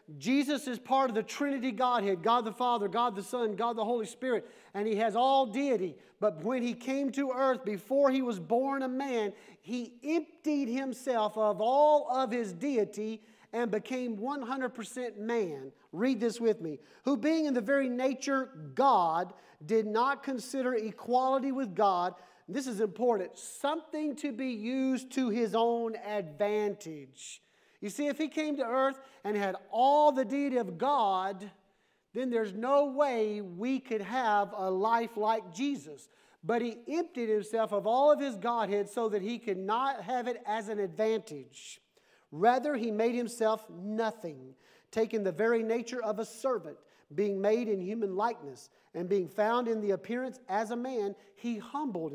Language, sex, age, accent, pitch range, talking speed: English, male, 40-59, American, 205-260 Hz, 170 wpm